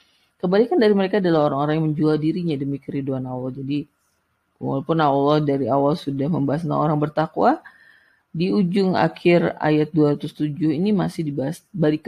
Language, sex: Indonesian, female